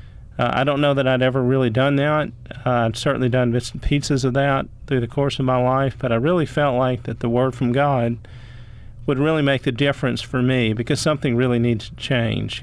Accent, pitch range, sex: American, 120-135 Hz, male